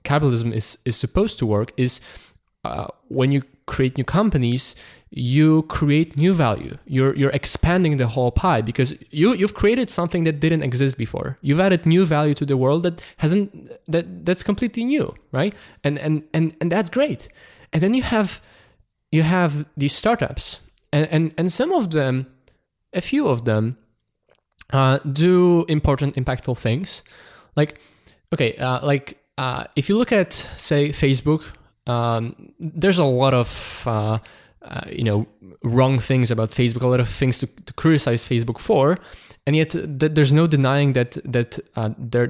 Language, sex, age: English, male, 20-39